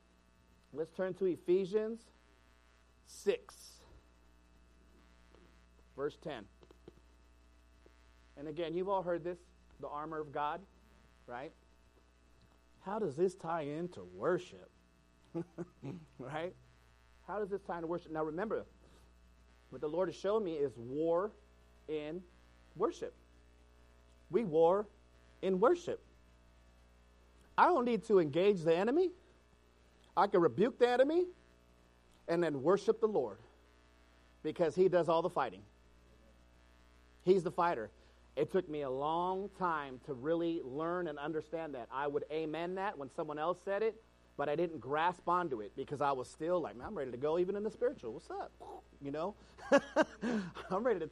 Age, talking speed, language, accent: 40-59, 140 wpm, English, American